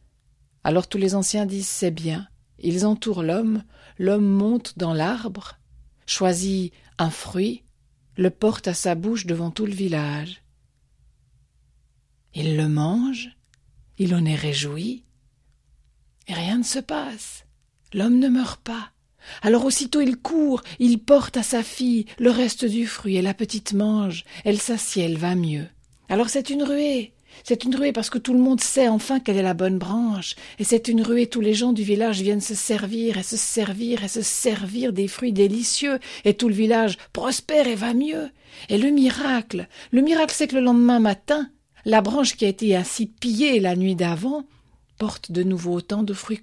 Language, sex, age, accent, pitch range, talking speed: French, female, 50-69, French, 175-240 Hz, 180 wpm